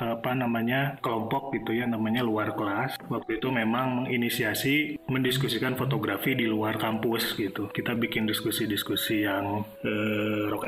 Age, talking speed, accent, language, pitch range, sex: 30-49, 135 wpm, native, Indonesian, 120-150 Hz, male